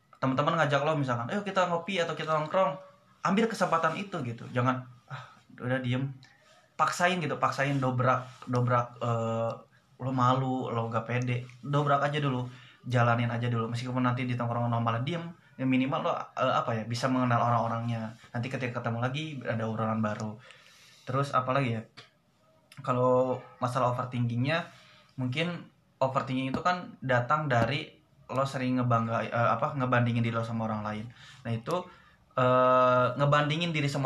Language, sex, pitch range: Indonesian, male, 120-145 Hz